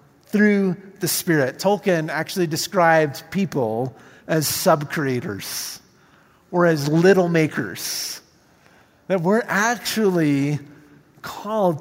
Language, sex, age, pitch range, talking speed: English, male, 50-69, 155-200 Hz, 85 wpm